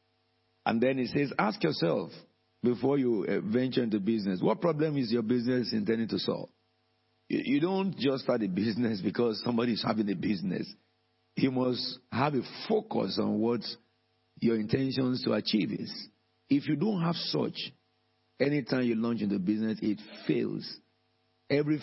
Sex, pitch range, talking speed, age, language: male, 110-125 Hz, 155 wpm, 50-69, English